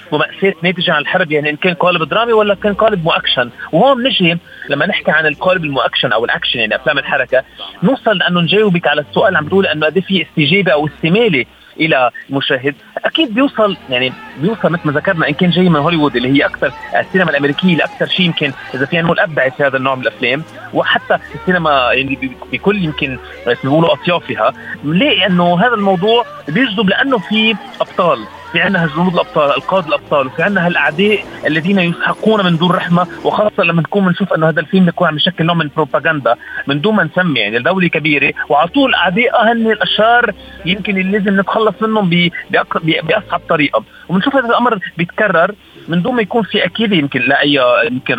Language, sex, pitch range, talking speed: Arabic, male, 155-210 Hz, 180 wpm